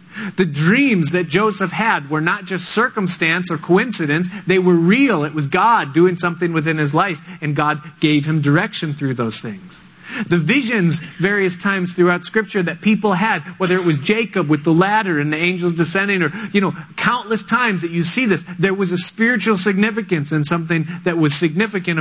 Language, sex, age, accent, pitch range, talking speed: English, male, 40-59, American, 165-200 Hz, 190 wpm